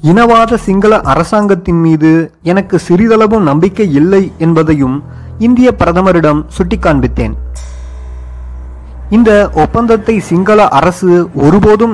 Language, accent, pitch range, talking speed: Tamil, native, 140-200 Hz, 85 wpm